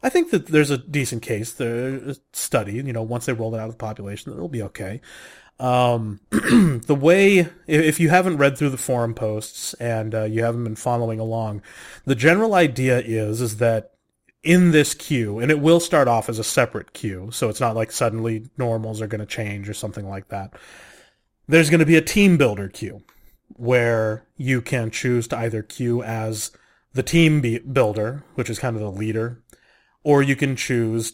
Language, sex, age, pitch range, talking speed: English, male, 30-49, 115-145 Hz, 195 wpm